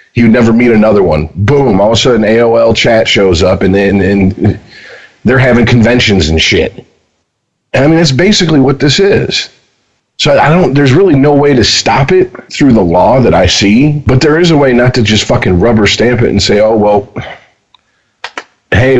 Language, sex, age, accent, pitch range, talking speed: English, male, 40-59, American, 110-155 Hz, 200 wpm